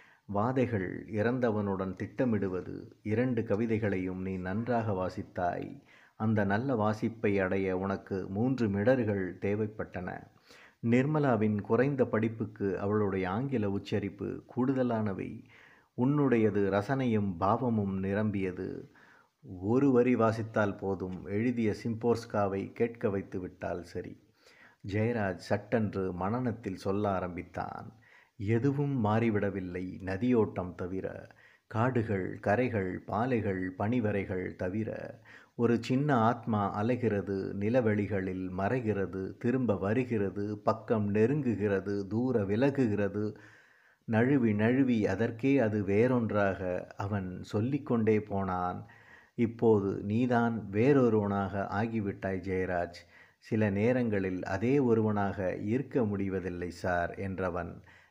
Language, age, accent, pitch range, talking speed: Tamil, 50-69, native, 95-115 Hz, 85 wpm